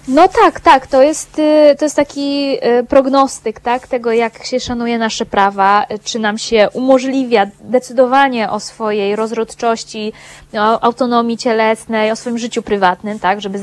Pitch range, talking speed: 215-260 Hz, 145 wpm